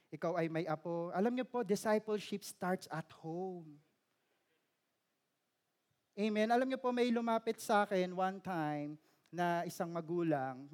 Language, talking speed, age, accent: Filipino, 135 wpm, 20-39, native